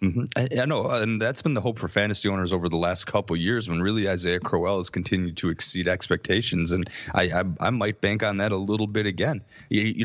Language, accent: English, American